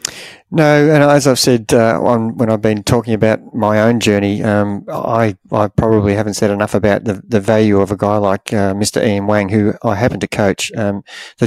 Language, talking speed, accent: English, 210 wpm, Australian